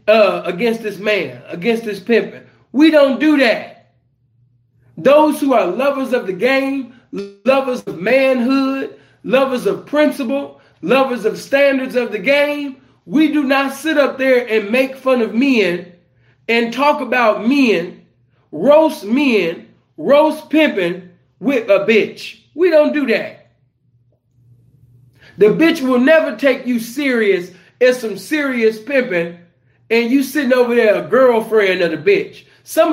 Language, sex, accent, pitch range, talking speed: English, male, American, 170-260 Hz, 140 wpm